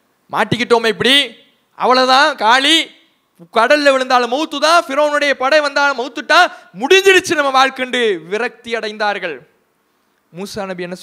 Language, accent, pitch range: English, Indian, 220-325 Hz